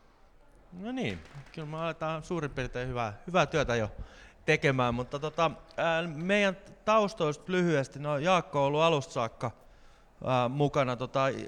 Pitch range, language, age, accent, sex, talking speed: 120-145 Hz, Finnish, 30-49, native, male, 135 wpm